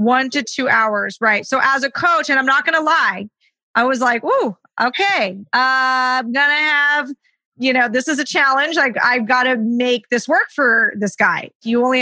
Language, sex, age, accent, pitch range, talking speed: English, female, 30-49, American, 215-260 Hz, 210 wpm